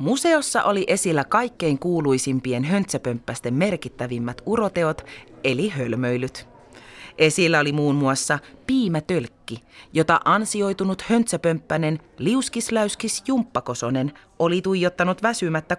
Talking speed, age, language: 85 wpm, 30-49, Finnish